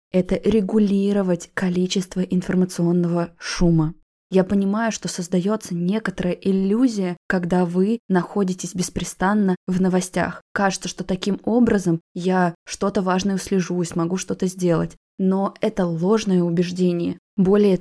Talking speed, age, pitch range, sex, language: 115 wpm, 20-39, 175-200 Hz, female, Russian